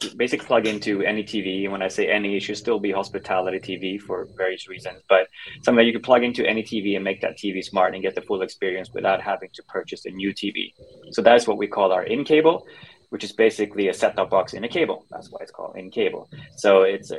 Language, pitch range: English, 95-110 Hz